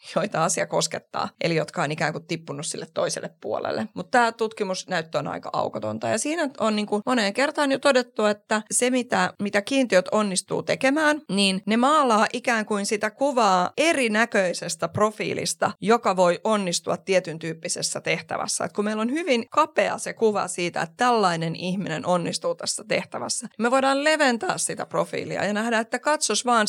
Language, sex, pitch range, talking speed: Finnish, female, 175-220 Hz, 165 wpm